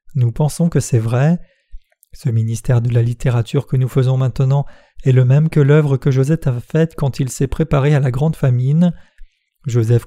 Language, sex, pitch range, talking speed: French, male, 125-145 Hz, 190 wpm